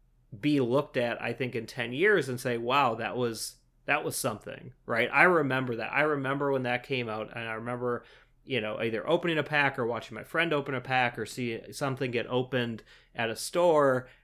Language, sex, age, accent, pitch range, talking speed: English, male, 30-49, American, 120-145 Hz, 210 wpm